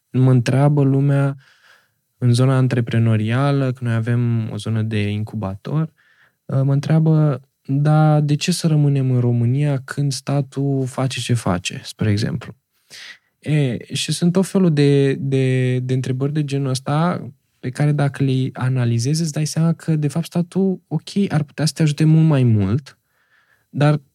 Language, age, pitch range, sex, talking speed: Romanian, 20-39, 125-160 Hz, male, 150 wpm